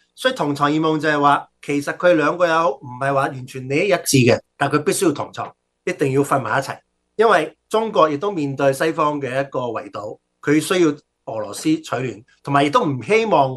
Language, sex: Chinese, male